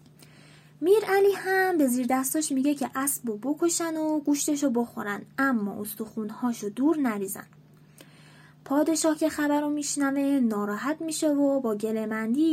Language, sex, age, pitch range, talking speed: Persian, female, 20-39, 225-305 Hz, 130 wpm